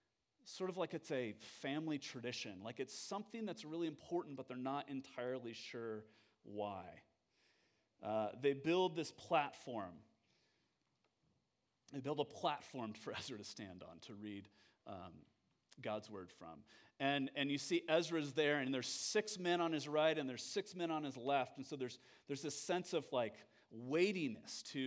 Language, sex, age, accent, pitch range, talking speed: English, male, 40-59, American, 120-155 Hz, 165 wpm